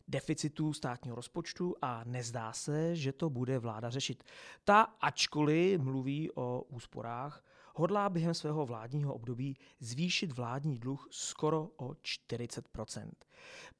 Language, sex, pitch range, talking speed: Czech, male, 130-175 Hz, 115 wpm